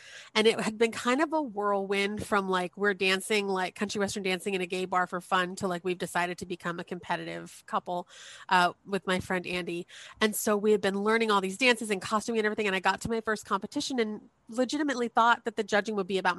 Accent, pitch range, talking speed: American, 185-225 Hz, 240 wpm